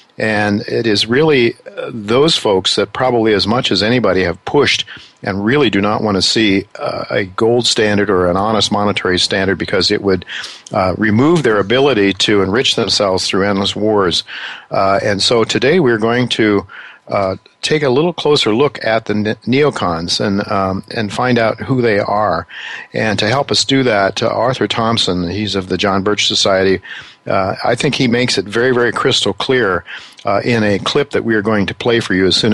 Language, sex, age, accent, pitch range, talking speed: English, male, 50-69, American, 100-115 Hz, 185 wpm